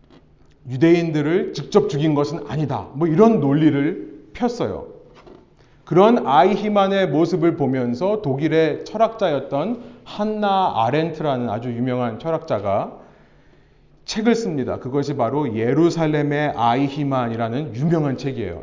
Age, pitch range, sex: 40-59, 130-200 Hz, male